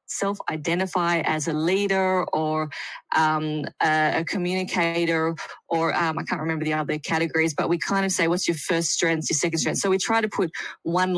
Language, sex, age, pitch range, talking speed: English, female, 20-39, 165-190 Hz, 190 wpm